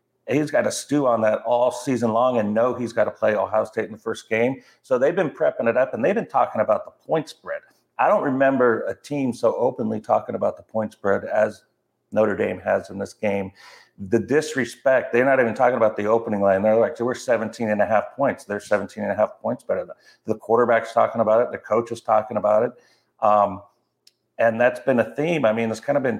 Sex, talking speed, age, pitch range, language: male, 235 wpm, 50-69, 105-135 Hz, English